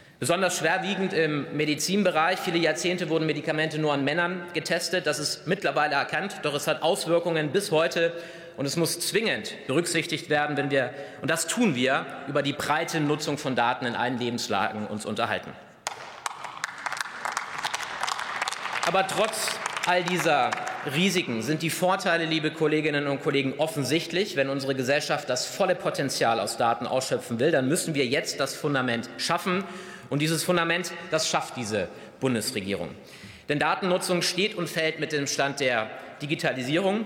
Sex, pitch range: male, 135-170 Hz